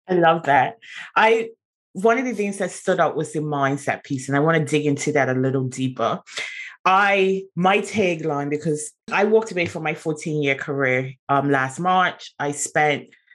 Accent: British